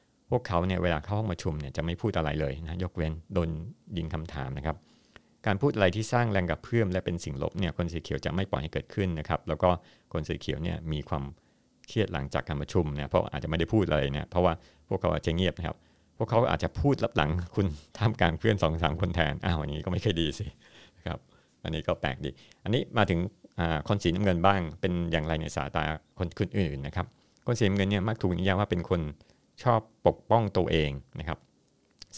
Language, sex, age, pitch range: Thai, male, 60-79, 80-95 Hz